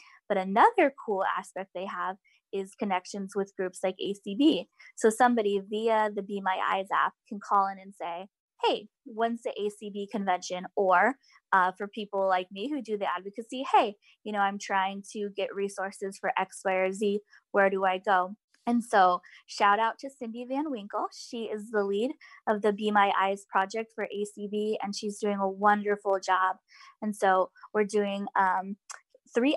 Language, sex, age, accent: English, female, 20-39, American